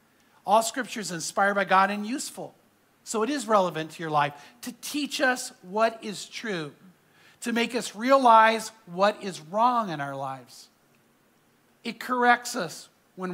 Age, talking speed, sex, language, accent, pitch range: 50-69, 160 wpm, male, English, American, 160-225 Hz